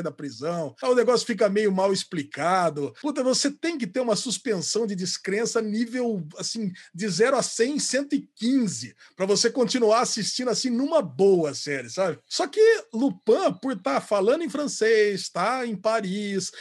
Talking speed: 165 wpm